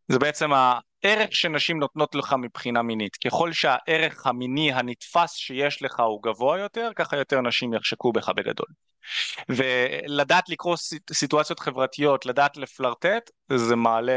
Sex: male